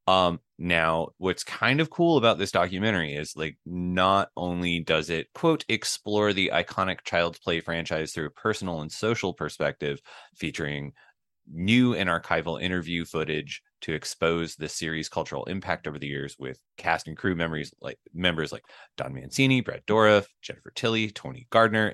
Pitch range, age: 80-100 Hz, 20-39